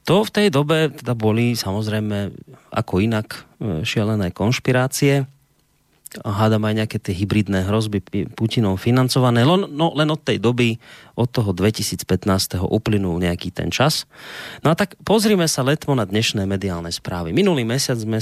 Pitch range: 95-125 Hz